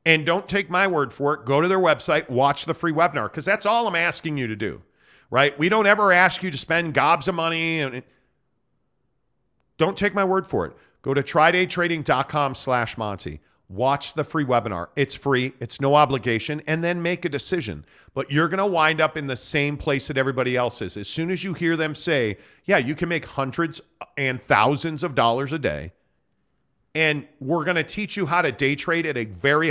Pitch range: 135-180 Hz